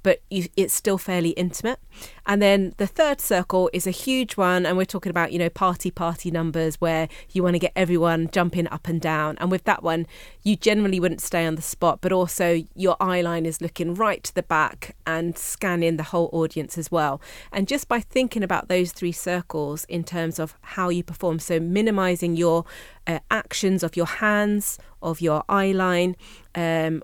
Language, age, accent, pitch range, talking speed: English, 30-49, British, 165-190 Hz, 195 wpm